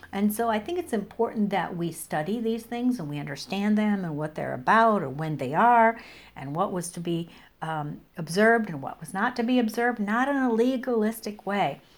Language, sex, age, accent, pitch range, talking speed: English, female, 60-79, American, 170-215 Hz, 210 wpm